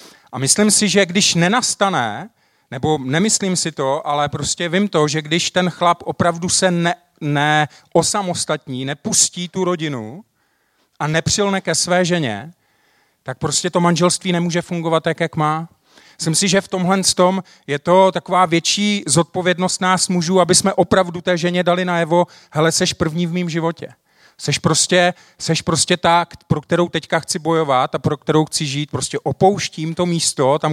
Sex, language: male, Czech